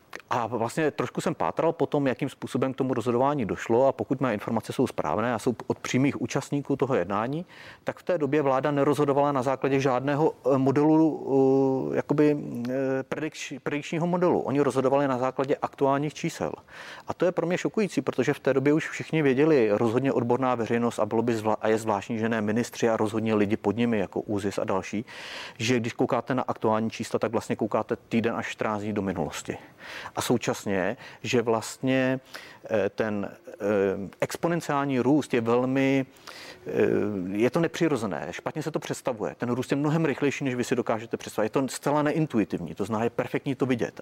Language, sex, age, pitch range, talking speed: Czech, male, 40-59, 115-140 Hz, 180 wpm